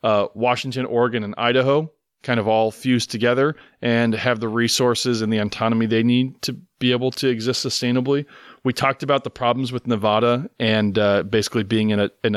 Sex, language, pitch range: male, English, 115-135 Hz